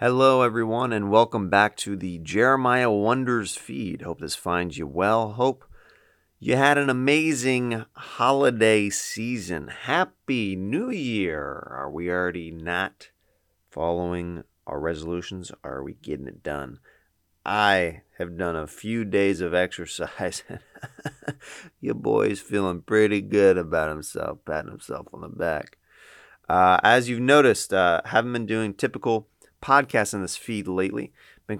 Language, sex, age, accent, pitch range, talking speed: English, male, 30-49, American, 85-115 Hz, 135 wpm